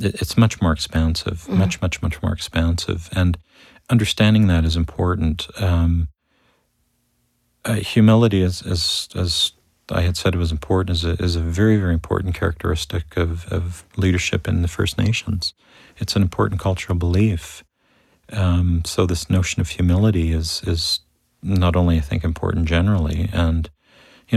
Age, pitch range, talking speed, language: 40-59, 85-105 Hz, 155 wpm, English